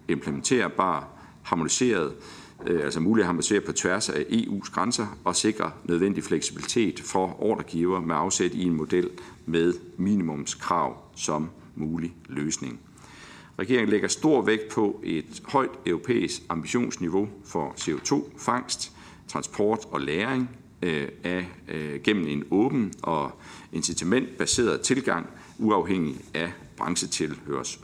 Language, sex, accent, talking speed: Danish, male, native, 115 wpm